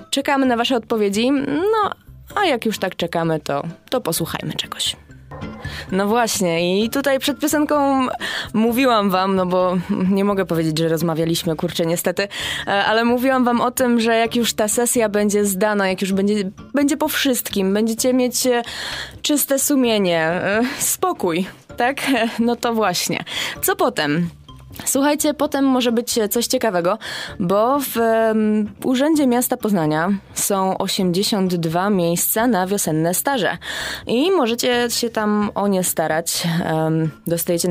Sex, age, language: female, 20-39, Polish